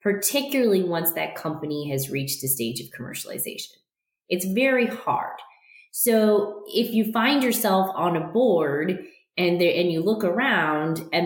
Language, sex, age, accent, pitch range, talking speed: English, female, 20-39, American, 155-210 Hz, 150 wpm